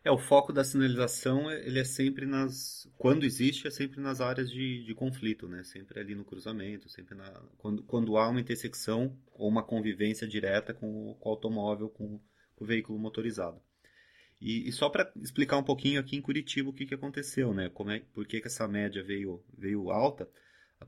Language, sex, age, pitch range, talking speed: Portuguese, male, 30-49, 105-130 Hz, 190 wpm